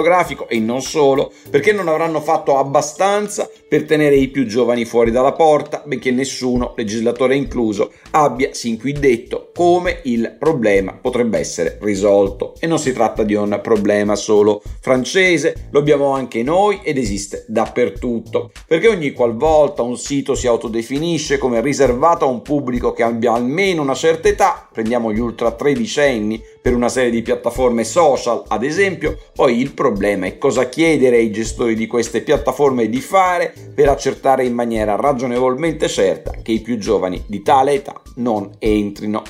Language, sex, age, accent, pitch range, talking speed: Italian, male, 50-69, native, 115-150 Hz, 160 wpm